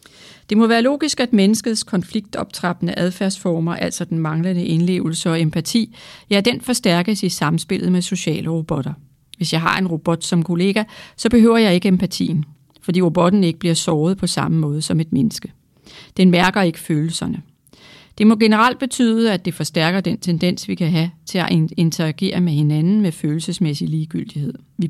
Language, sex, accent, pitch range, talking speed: Danish, female, native, 165-200 Hz, 170 wpm